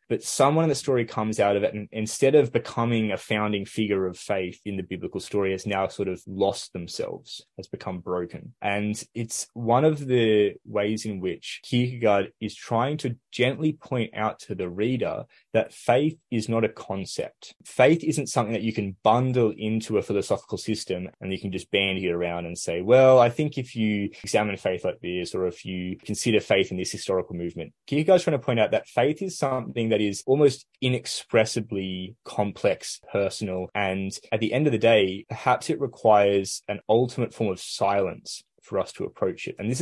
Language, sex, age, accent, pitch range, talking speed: English, male, 20-39, Australian, 95-125 Hz, 195 wpm